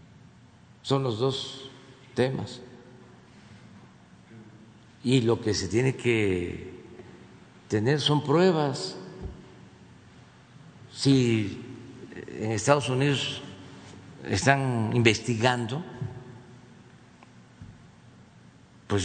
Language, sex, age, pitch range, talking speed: Spanish, male, 50-69, 105-135 Hz, 65 wpm